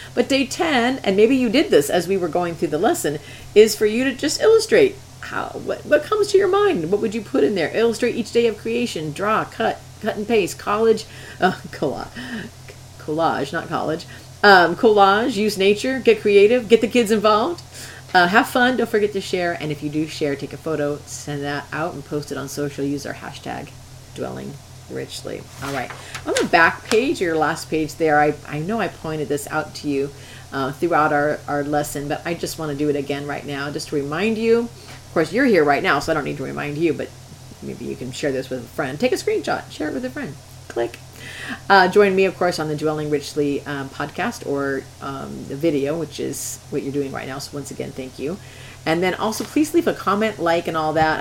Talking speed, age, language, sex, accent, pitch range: 230 wpm, 40-59, English, female, American, 145-210 Hz